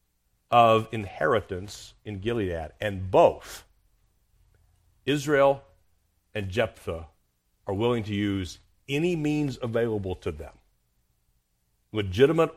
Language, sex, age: English, male, 40-59